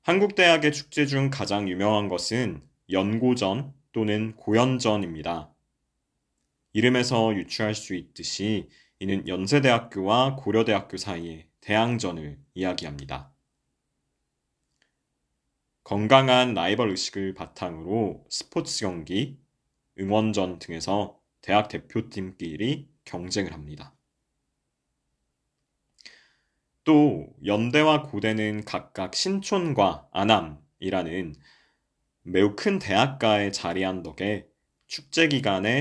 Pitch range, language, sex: 95-135 Hz, Korean, male